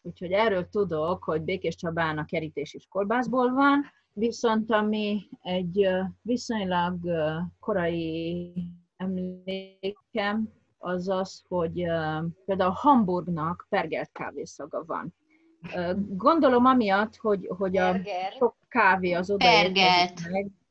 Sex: female